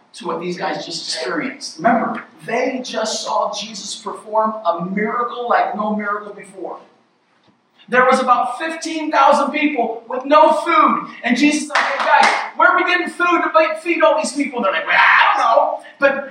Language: English